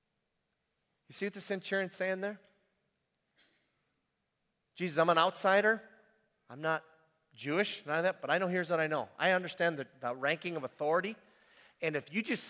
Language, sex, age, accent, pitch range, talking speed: English, male, 40-59, American, 160-220 Hz, 170 wpm